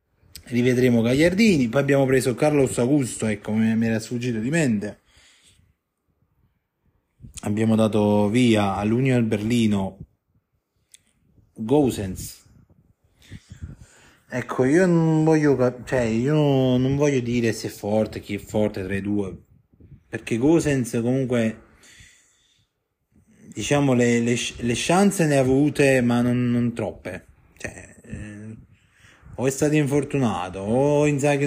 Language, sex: Italian, male